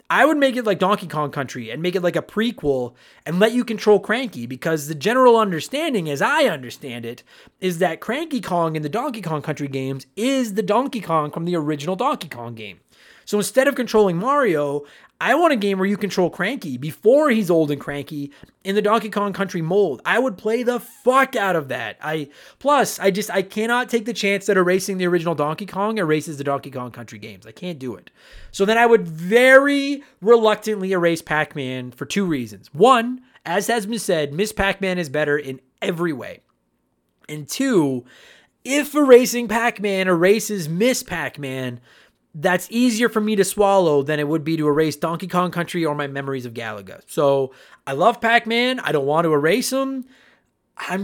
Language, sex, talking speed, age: English, male, 195 wpm, 30-49